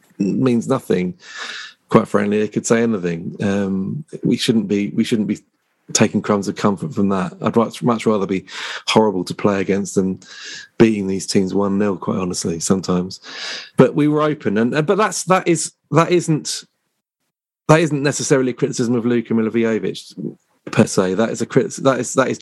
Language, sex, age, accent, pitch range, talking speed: English, male, 30-49, British, 105-145 Hz, 175 wpm